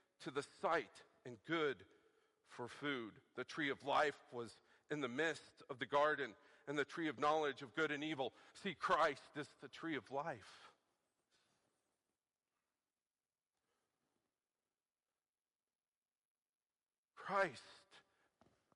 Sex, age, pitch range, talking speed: male, 50-69, 140-165 Hz, 110 wpm